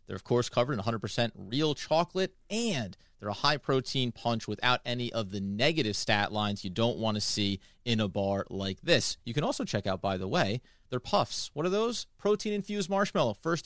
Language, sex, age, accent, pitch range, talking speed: English, male, 30-49, American, 110-145 Hz, 200 wpm